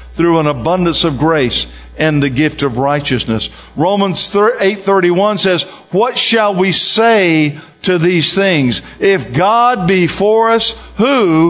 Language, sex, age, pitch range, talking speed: English, male, 50-69, 160-215 Hz, 145 wpm